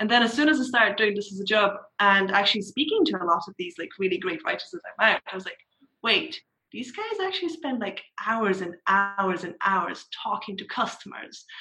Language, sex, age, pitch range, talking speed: English, female, 20-39, 190-280 Hz, 225 wpm